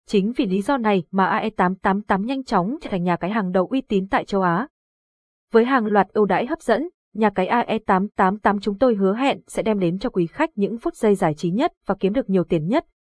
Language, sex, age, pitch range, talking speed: Vietnamese, female, 20-39, 190-240 Hz, 250 wpm